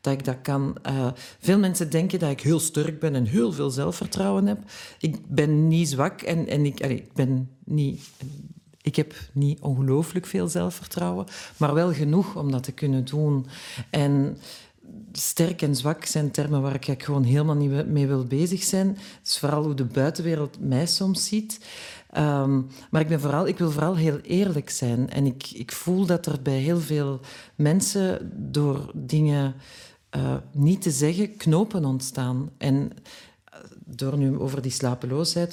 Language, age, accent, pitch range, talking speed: Dutch, 40-59, Dutch, 135-170 Hz, 170 wpm